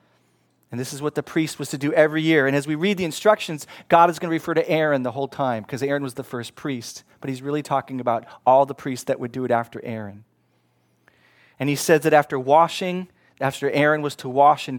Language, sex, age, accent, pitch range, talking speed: English, male, 30-49, American, 125-155 Hz, 240 wpm